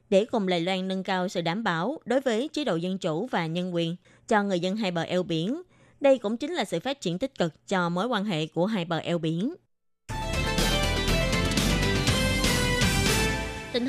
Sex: female